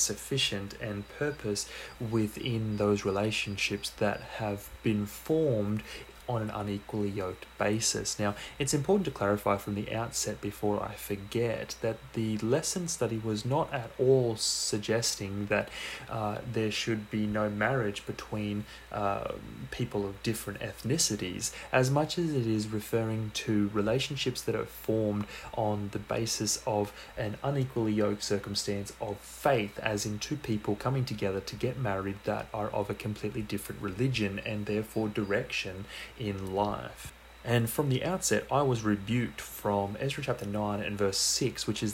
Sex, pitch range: male, 105-120 Hz